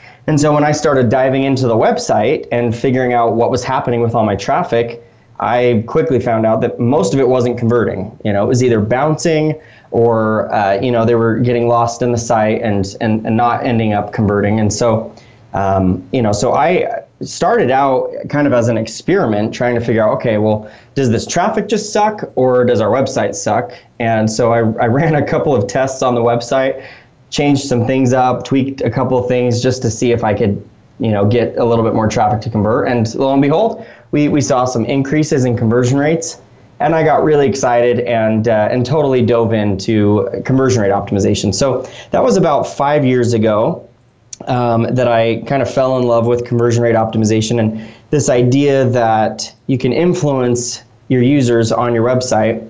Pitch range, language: 115-130 Hz, English